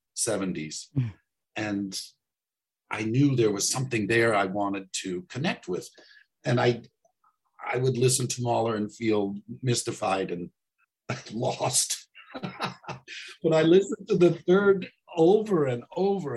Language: English